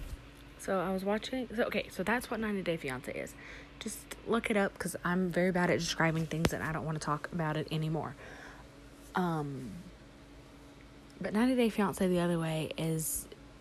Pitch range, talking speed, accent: 155-190 Hz, 180 wpm, American